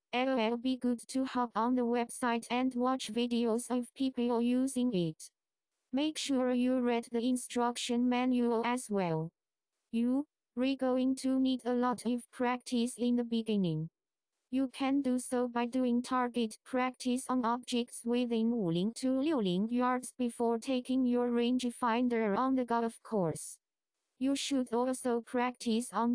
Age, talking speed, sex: 20-39, 150 wpm, female